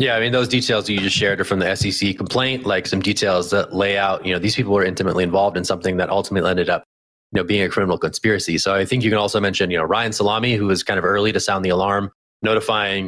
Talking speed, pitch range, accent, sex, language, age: 270 wpm, 95-115 Hz, American, male, English, 30-49